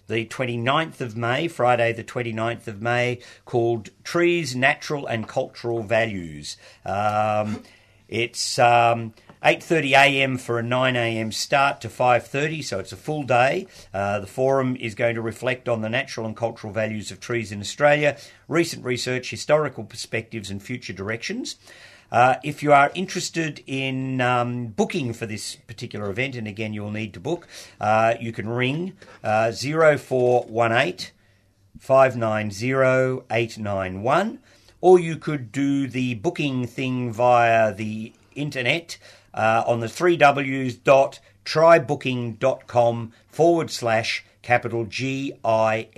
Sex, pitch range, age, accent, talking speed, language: male, 110-135 Hz, 50-69, Australian, 145 wpm, English